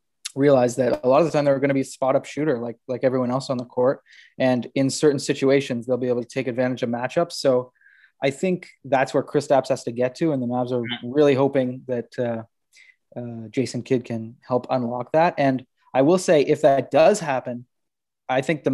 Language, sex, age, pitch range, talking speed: English, male, 20-39, 125-140 Hz, 225 wpm